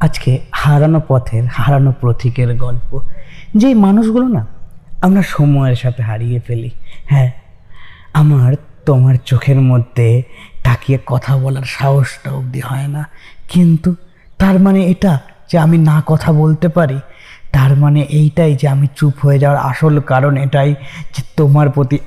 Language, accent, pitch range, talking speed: Bengali, native, 130-155 Hz, 100 wpm